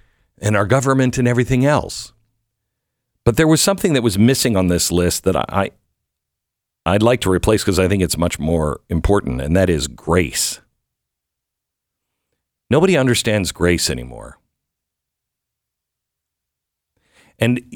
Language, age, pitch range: English, 50-69, 85-120 Hz